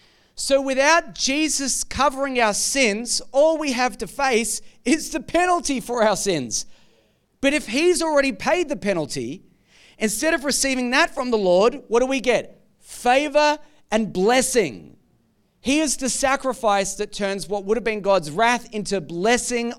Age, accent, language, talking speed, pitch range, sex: 30-49, Australian, English, 160 wpm, 200-260 Hz, male